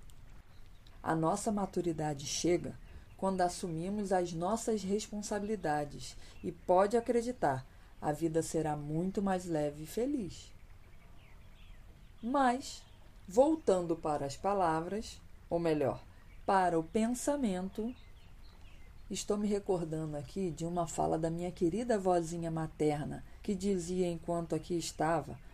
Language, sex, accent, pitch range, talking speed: Portuguese, female, Brazilian, 145-210 Hz, 110 wpm